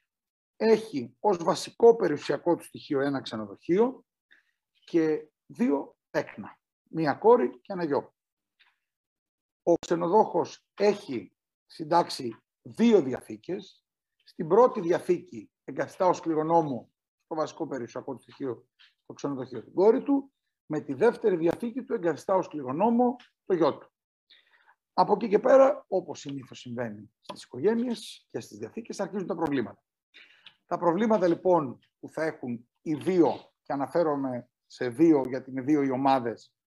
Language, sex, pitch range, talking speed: Greek, male, 130-210 Hz, 130 wpm